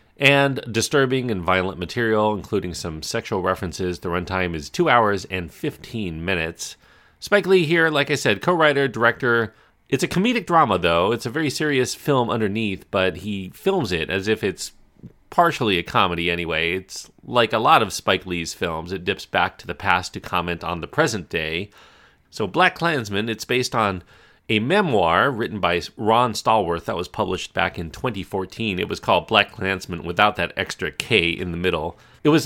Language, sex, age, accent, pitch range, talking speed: English, male, 40-59, American, 90-120 Hz, 185 wpm